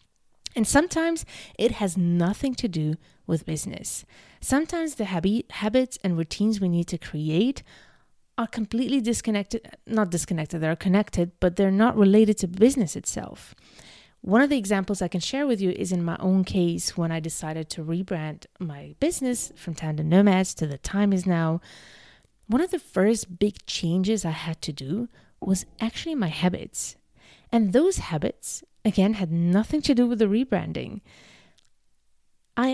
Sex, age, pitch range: female, 30-49, 170-230 Hz